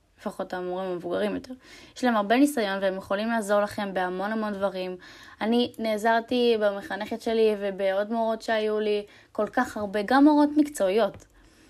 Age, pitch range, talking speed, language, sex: 10-29, 200-275 Hz, 150 wpm, Hebrew, female